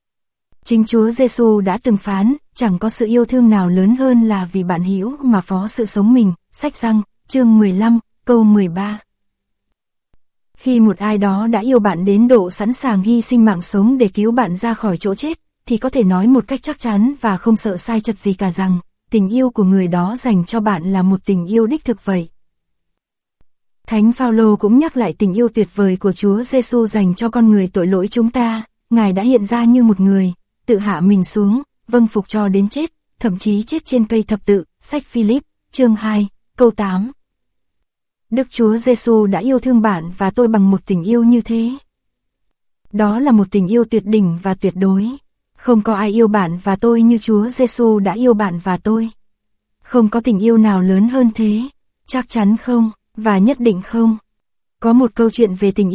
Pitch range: 200-235 Hz